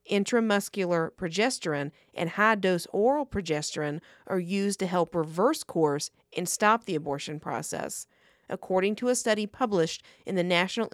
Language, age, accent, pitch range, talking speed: English, 40-59, American, 160-200 Hz, 135 wpm